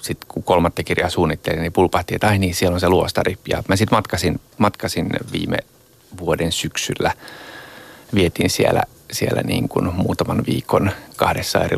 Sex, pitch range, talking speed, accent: male, 85-110 Hz, 160 wpm, native